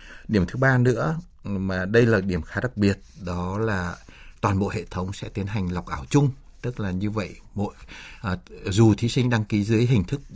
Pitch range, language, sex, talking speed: 90-115 Hz, Vietnamese, male, 215 wpm